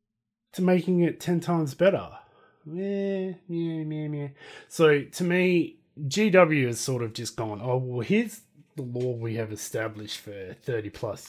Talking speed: 160 wpm